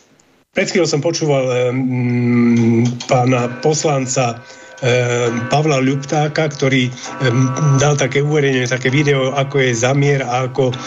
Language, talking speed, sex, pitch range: Slovak, 110 wpm, male, 120-140 Hz